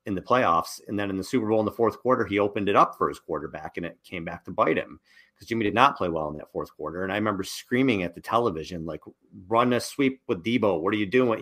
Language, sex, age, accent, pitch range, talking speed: English, male, 30-49, American, 95-120 Hz, 285 wpm